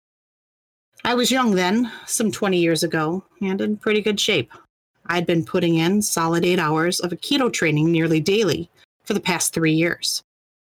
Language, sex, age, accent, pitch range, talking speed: English, female, 40-59, American, 160-195 Hz, 170 wpm